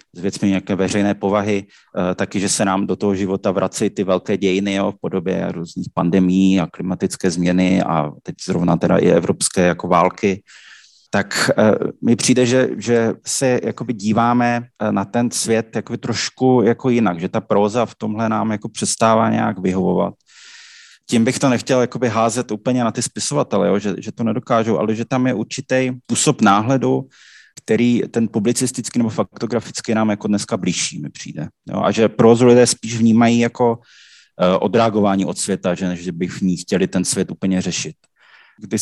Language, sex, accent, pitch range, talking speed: Czech, male, native, 95-120 Hz, 170 wpm